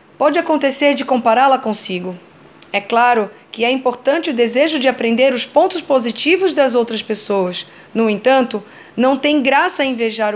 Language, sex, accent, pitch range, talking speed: English, female, Brazilian, 225-285 Hz, 150 wpm